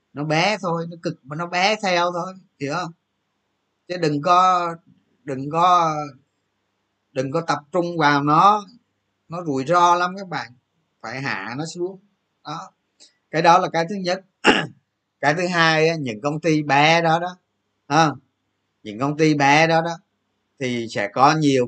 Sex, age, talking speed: male, 20-39, 165 wpm